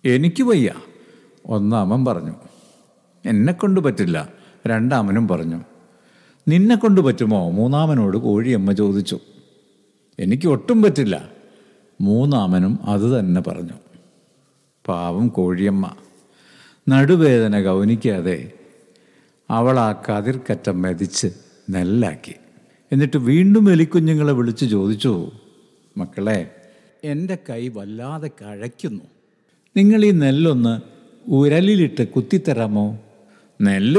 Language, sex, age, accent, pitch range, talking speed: Malayalam, male, 60-79, native, 105-170 Hz, 75 wpm